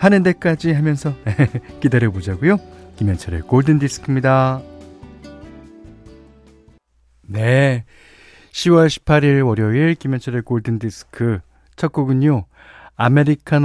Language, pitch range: Korean, 105-155 Hz